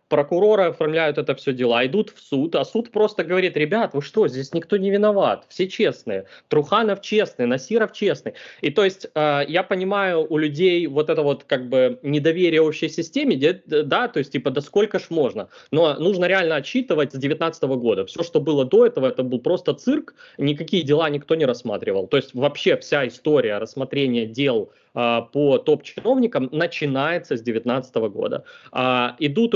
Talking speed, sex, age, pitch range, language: 170 wpm, male, 20-39, 130-185 Hz, Ukrainian